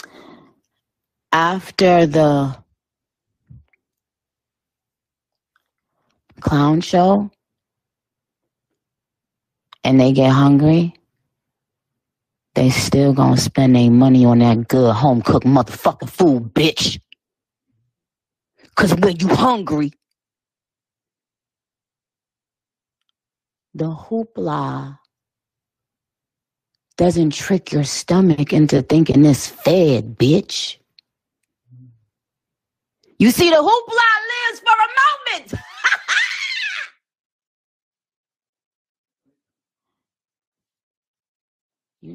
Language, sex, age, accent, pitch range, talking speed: English, female, 40-59, American, 125-165 Hz, 65 wpm